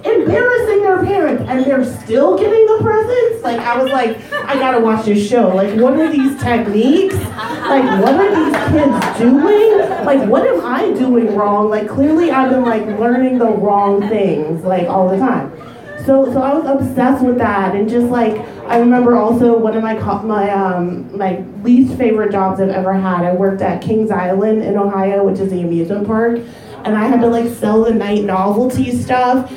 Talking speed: 195 wpm